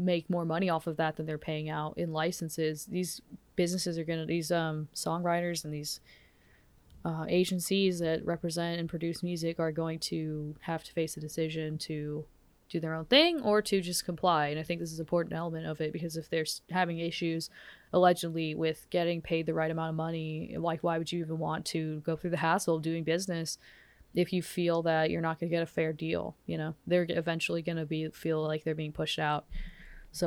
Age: 20-39